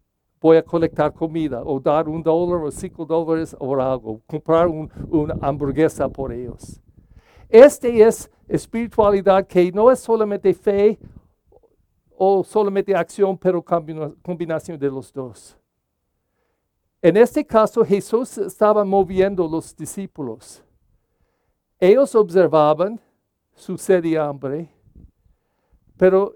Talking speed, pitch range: 115 wpm, 155-205 Hz